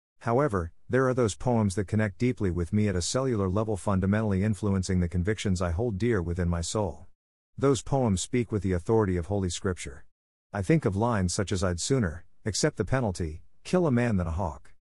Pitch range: 90-115 Hz